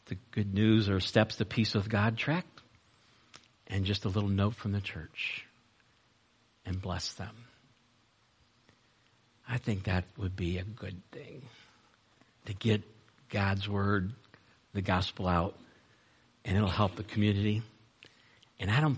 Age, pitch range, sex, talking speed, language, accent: 50-69, 105-125 Hz, male, 140 wpm, English, American